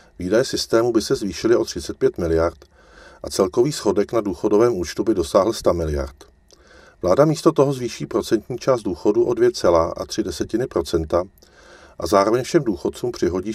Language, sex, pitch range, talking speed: Czech, male, 80-130 Hz, 140 wpm